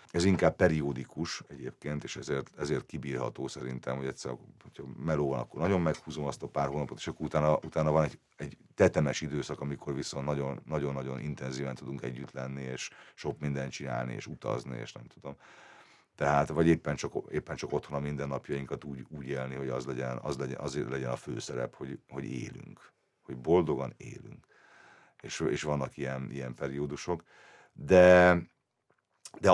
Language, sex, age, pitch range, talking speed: Hungarian, male, 50-69, 65-75 Hz, 165 wpm